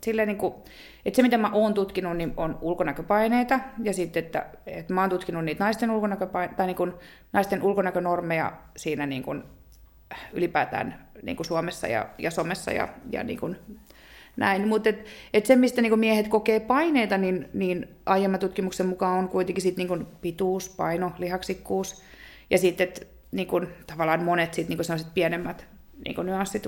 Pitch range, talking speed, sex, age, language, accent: 170-210 Hz, 160 wpm, female, 30-49, Finnish, native